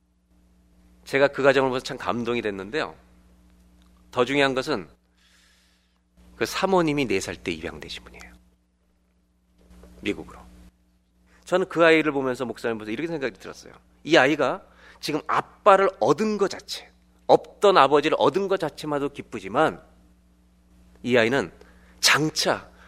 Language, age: Korean, 40-59